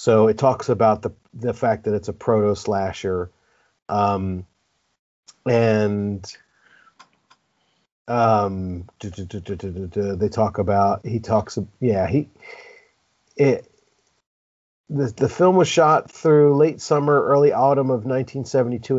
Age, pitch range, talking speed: 40-59, 105-130 Hz, 110 wpm